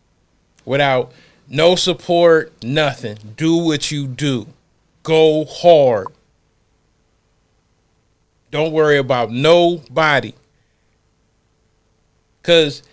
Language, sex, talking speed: English, male, 70 wpm